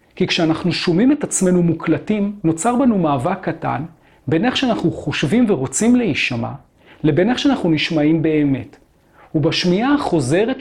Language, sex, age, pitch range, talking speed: Hebrew, male, 40-59, 145-200 Hz, 130 wpm